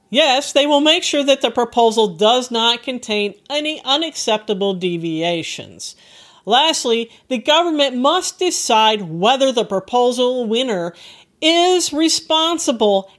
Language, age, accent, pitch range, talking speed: English, 50-69, American, 205-315 Hz, 115 wpm